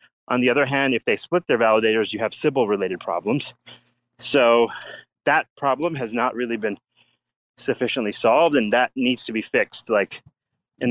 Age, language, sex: 30-49, English, male